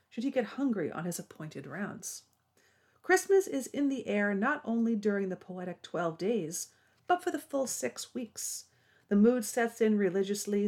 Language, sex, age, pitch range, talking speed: English, female, 40-59, 165-215 Hz, 175 wpm